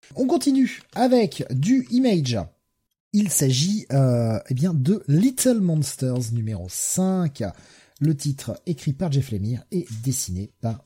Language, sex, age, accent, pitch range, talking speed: French, male, 30-49, French, 110-155 Hz, 120 wpm